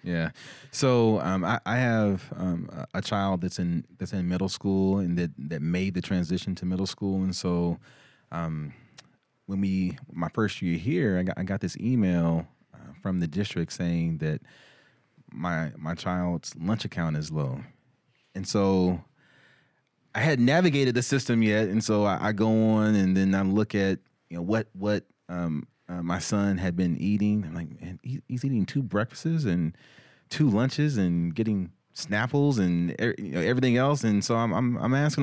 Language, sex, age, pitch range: English, male, 30-49, 90-125 Hz